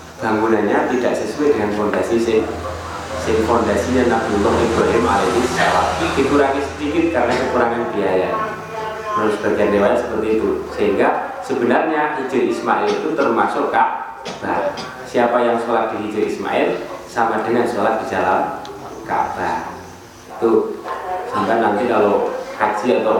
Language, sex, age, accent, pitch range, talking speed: Indonesian, male, 30-49, native, 105-140 Hz, 120 wpm